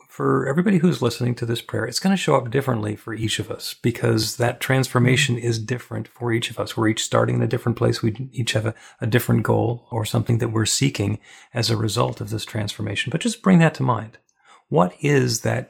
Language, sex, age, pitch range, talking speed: English, male, 40-59, 110-120 Hz, 230 wpm